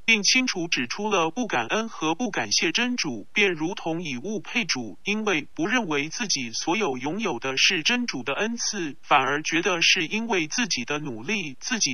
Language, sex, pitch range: Chinese, male, 155-230 Hz